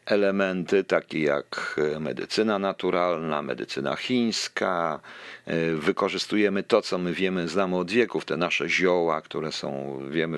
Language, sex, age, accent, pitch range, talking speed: Polish, male, 50-69, native, 85-110 Hz, 120 wpm